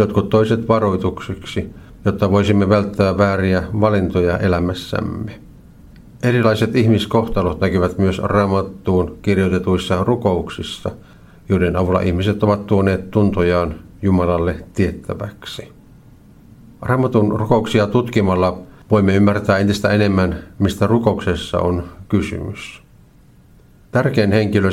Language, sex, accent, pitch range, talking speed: Finnish, male, native, 90-110 Hz, 90 wpm